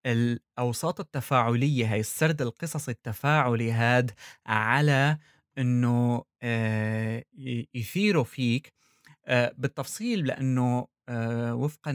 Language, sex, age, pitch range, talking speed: Arabic, male, 20-39, 120-150 Hz, 85 wpm